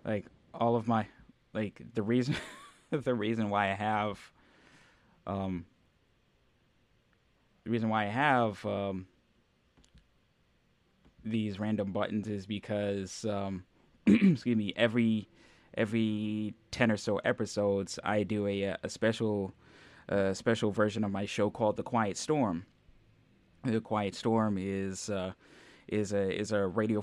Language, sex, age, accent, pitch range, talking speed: English, male, 10-29, American, 95-110 Hz, 130 wpm